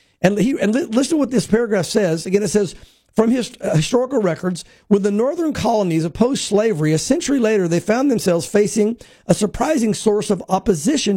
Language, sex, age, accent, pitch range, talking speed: English, male, 50-69, American, 195-250 Hz, 190 wpm